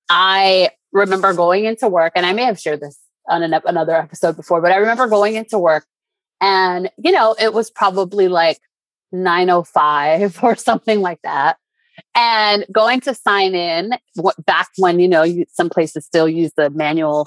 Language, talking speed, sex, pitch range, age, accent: English, 175 wpm, female, 165-205 Hz, 30-49, American